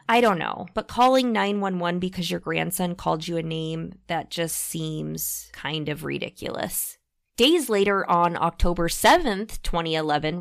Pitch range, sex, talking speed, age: 165-220 Hz, female, 145 wpm, 20-39